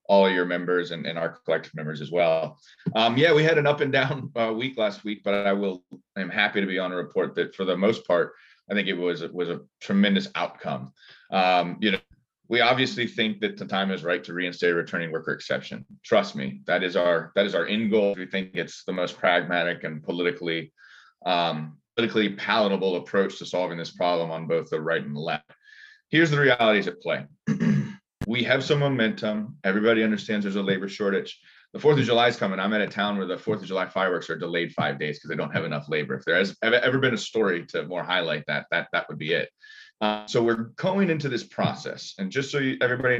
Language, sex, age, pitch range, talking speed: English, male, 30-49, 85-120 Hz, 230 wpm